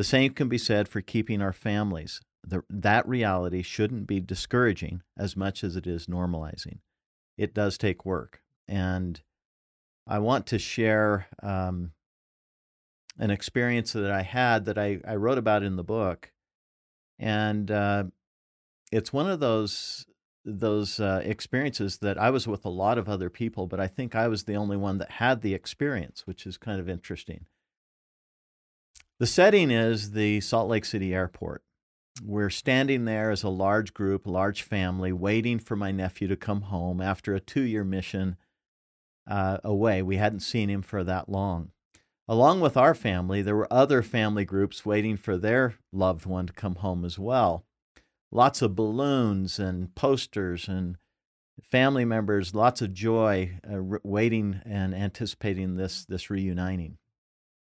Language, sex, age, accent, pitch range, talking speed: English, male, 50-69, American, 95-110 Hz, 160 wpm